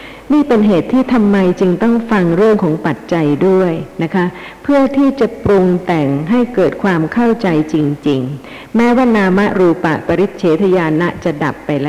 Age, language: 60-79, Thai